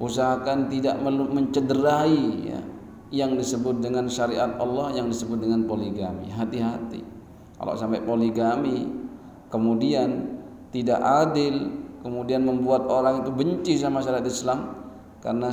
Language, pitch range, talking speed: Indonesian, 115-140 Hz, 110 wpm